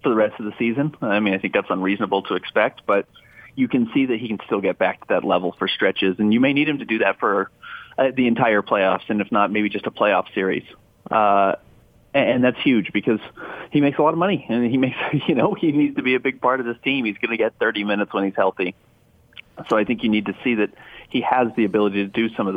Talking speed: 270 wpm